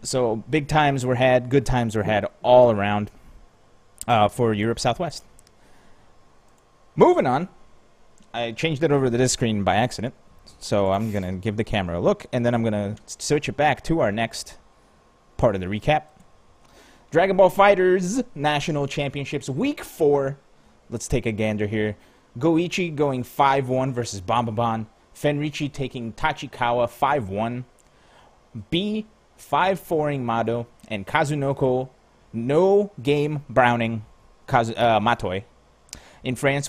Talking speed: 130 wpm